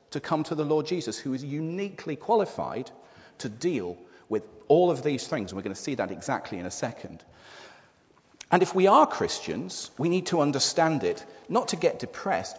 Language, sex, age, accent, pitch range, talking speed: English, male, 40-59, British, 135-190 Hz, 195 wpm